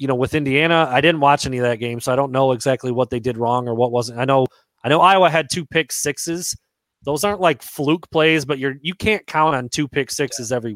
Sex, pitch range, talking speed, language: male, 125-160 Hz, 260 wpm, English